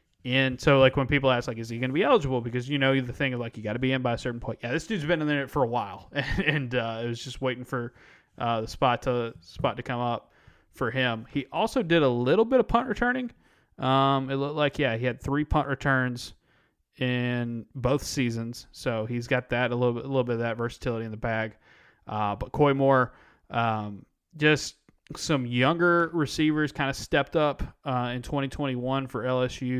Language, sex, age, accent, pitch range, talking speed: English, male, 20-39, American, 115-135 Hz, 215 wpm